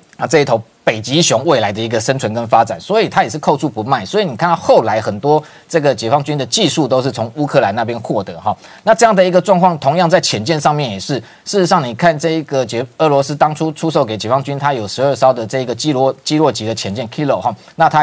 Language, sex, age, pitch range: Chinese, male, 20-39, 130-165 Hz